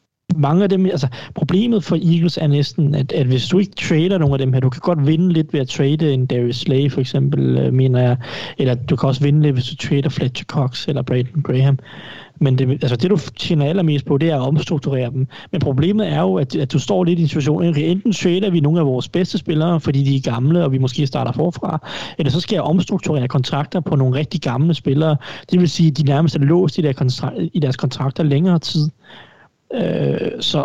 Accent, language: native, Danish